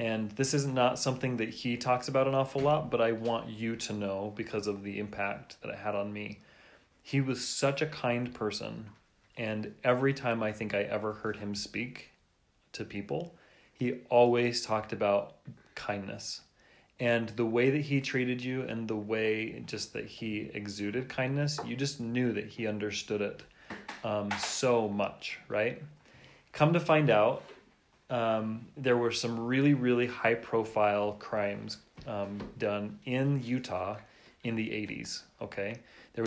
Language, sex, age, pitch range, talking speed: English, male, 30-49, 105-125 Hz, 160 wpm